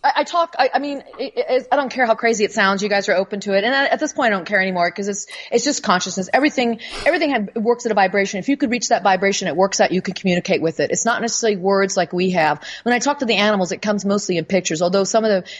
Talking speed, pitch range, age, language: 275 wpm, 190-245 Hz, 40-59, English